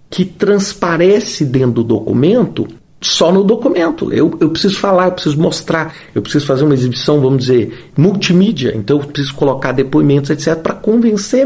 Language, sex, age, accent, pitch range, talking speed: Portuguese, male, 50-69, Brazilian, 150-210 Hz, 160 wpm